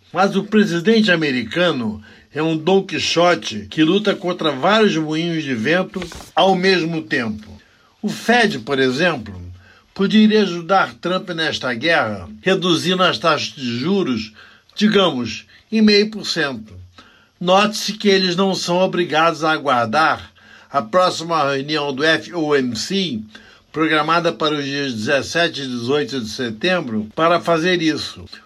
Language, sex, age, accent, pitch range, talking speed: Portuguese, male, 60-79, Brazilian, 135-190 Hz, 125 wpm